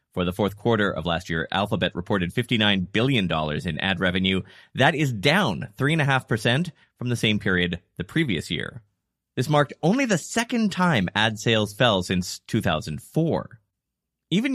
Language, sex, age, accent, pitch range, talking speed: English, male, 30-49, American, 95-150 Hz, 155 wpm